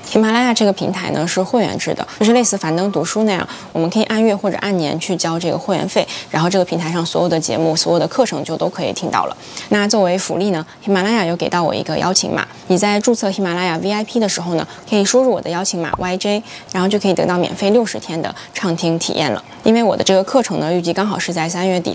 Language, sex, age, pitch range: Chinese, female, 20-39, 175-210 Hz